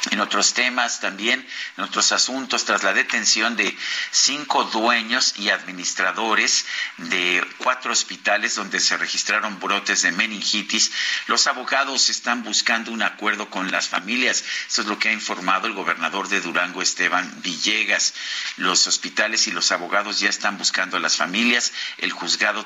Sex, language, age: male, Spanish, 50-69